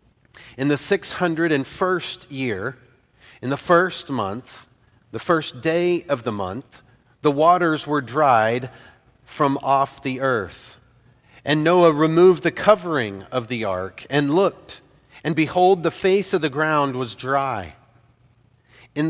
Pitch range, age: 125-160 Hz, 40-59